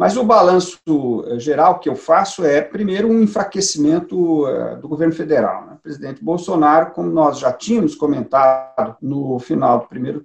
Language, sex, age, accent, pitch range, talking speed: Portuguese, male, 50-69, Brazilian, 130-170 Hz, 150 wpm